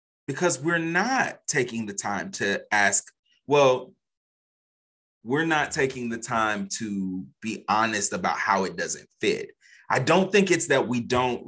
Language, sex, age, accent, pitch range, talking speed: English, male, 30-49, American, 110-160 Hz, 150 wpm